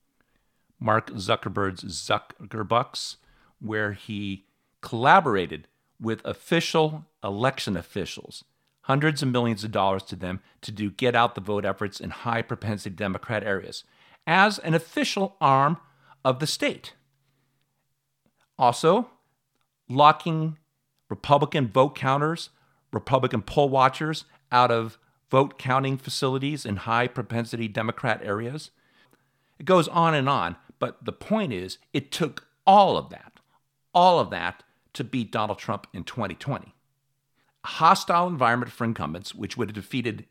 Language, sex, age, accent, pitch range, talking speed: English, male, 50-69, American, 110-135 Hz, 120 wpm